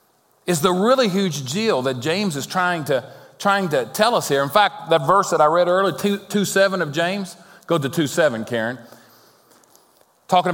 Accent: American